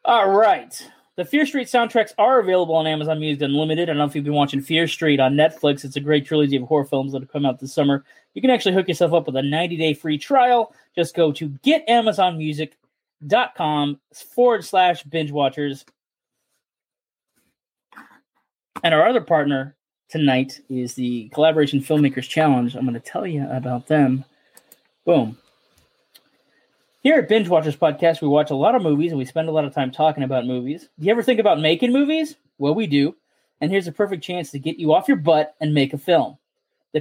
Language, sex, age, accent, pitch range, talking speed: English, male, 20-39, American, 145-190 Hz, 195 wpm